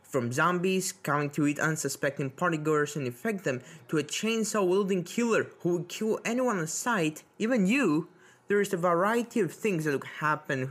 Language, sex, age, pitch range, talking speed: English, male, 20-39, 145-205 Hz, 175 wpm